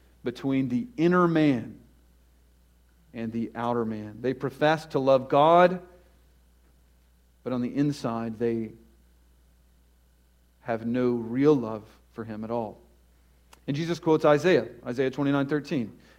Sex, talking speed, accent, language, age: male, 120 wpm, American, English, 40-59